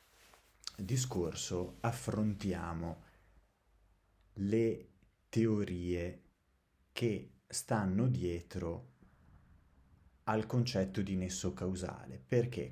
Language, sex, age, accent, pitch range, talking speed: Italian, male, 30-49, native, 90-105 Hz, 60 wpm